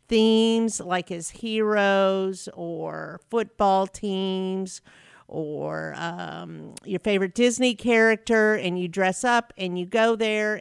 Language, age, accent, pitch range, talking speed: English, 50-69, American, 185-225 Hz, 120 wpm